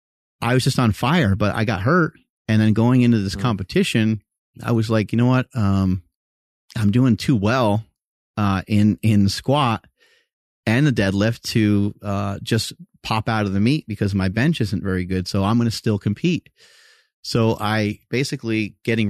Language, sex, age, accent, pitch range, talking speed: English, male, 30-49, American, 100-125 Hz, 180 wpm